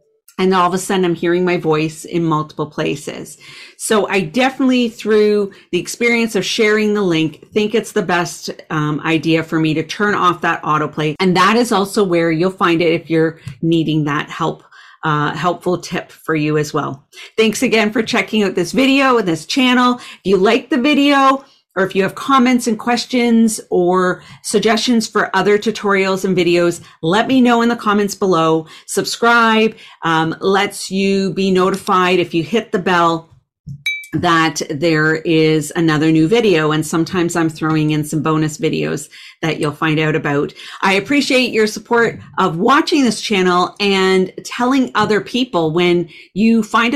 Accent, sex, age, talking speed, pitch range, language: American, female, 40-59, 175 wpm, 160-215 Hz, English